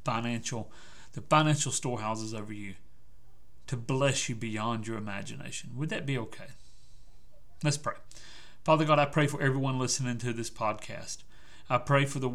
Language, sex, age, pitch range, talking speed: English, male, 40-59, 115-140 Hz, 155 wpm